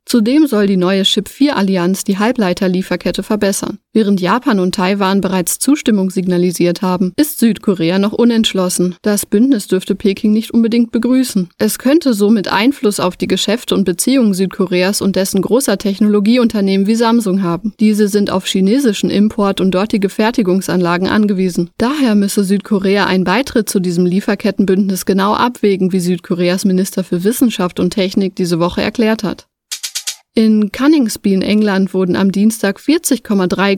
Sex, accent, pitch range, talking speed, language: female, German, 190-225 Hz, 145 wpm, German